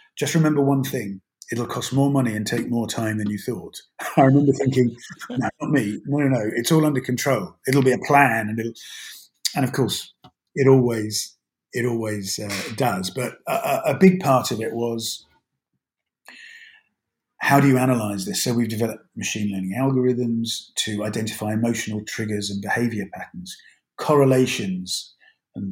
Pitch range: 110-135 Hz